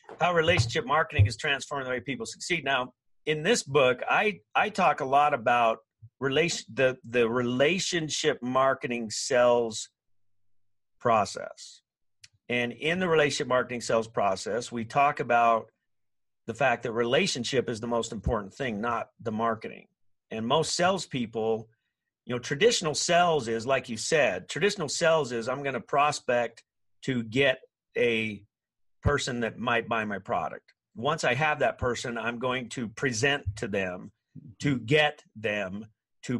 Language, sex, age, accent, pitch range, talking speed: English, male, 50-69, American, 115-150 Hz, 145 wpm